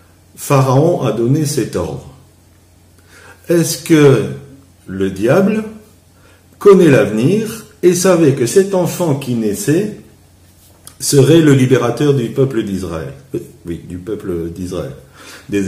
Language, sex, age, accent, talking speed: French, male, 60-79, French, 110 wpm